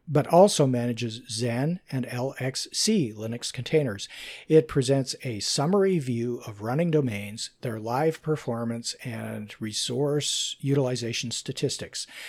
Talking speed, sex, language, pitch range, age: 110 wpm, male, English, 120-150 Hz, 50-69